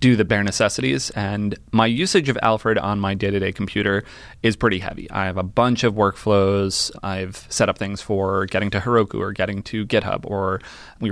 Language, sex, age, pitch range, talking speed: English, male, 20-39, 100-115 Hz, 195 wpm